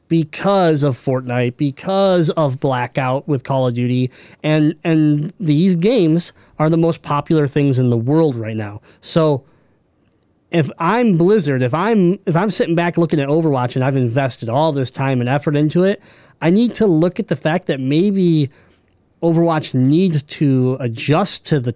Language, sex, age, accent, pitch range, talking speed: English, male, 20-39, American, 130-165 Hz, 170 wpm